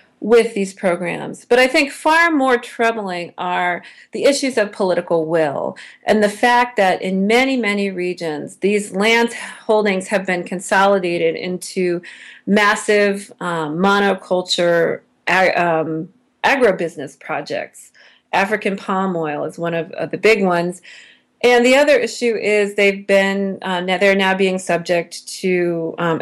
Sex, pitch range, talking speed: female, 175-220 Hz, 135 wpm